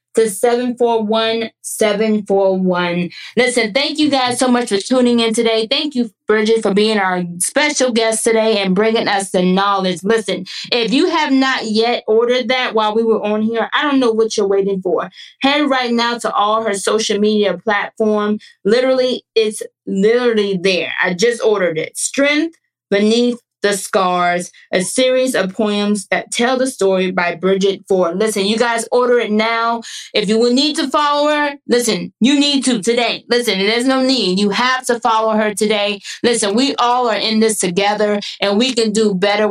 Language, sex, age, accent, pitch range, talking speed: English, female, 20-39, American, 200-245 Hz, 180 wpm